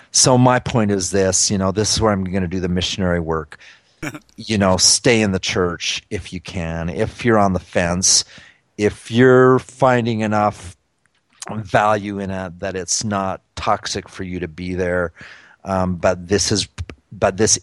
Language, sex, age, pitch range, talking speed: English, male, 40-59, 90-105 Hz, 180 wpm